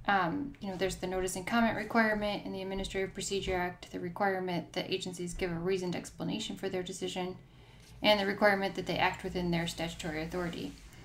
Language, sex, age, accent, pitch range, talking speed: English, female, 10-29, American, 180-210 Hz, 190 wpm